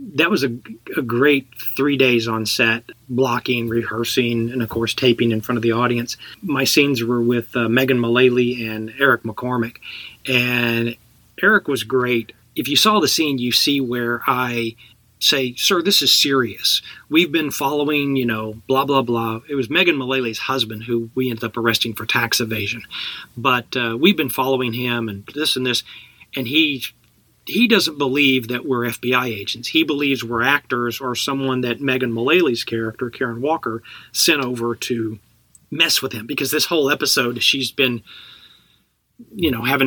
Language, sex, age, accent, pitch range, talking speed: English, male, 40-59, American, 115-140 Hz, 175 wpm